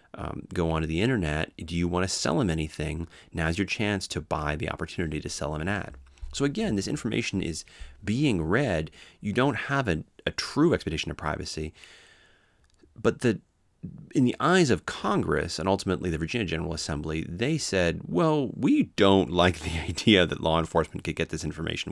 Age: 30-49